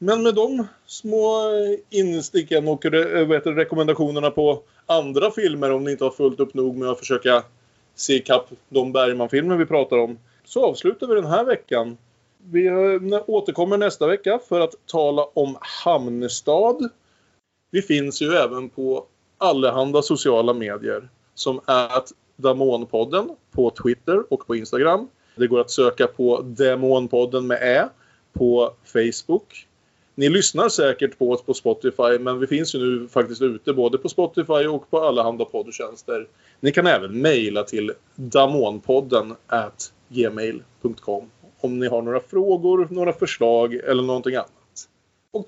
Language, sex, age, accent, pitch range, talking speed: Swedish, male, 20-39, Norwegian, 120-175 Hz, 145 wpm